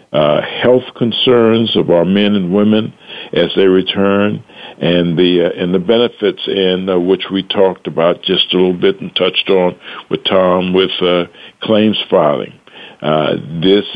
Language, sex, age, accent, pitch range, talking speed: English, male, 60-79, American, 90-110 Hz, 165 wpm